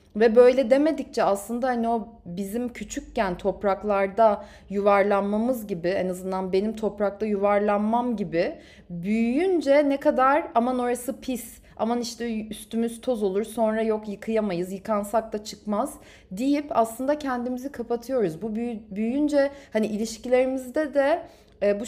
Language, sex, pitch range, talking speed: Turkish, female, 195-255 Hz, 120 wpm